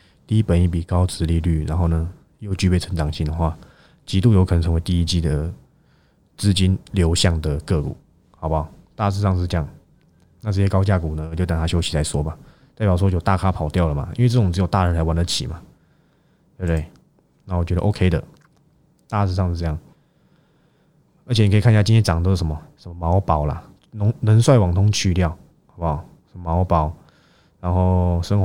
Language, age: Chinese, 20-39